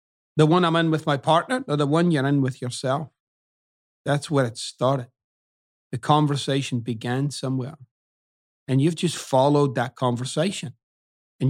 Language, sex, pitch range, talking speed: English, male, 130-165 Hz, 150 wpm